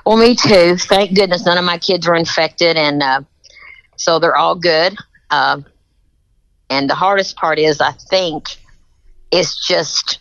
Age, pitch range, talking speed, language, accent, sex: 50-69, 140-165 Hz, 160 wpm, English, American, female